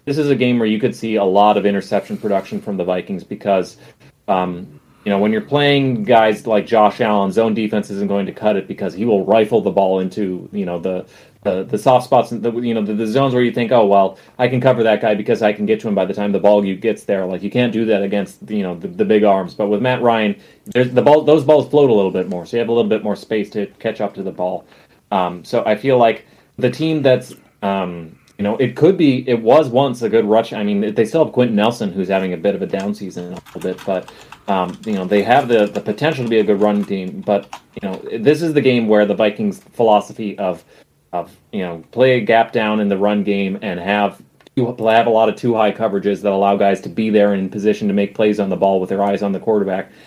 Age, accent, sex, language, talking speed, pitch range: 30-49, American, male, English, 270 wpm, 100-120 Hz